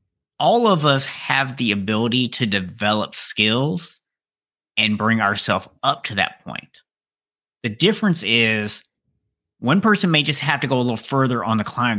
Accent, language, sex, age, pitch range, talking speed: American, English, male, 30-49, 120-155 Hz, 160 wpm